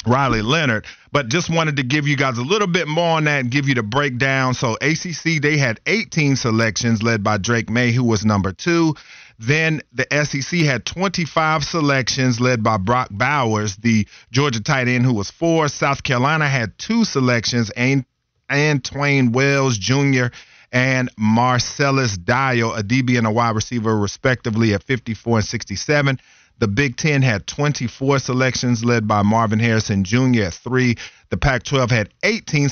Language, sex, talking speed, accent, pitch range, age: English, male, 165 wpm, American, 115-145 Hz, 40-59